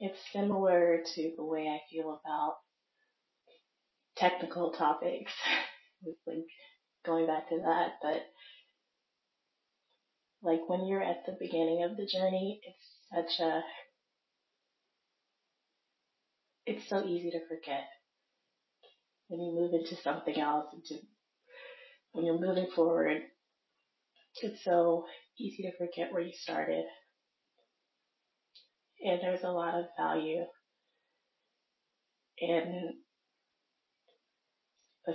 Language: English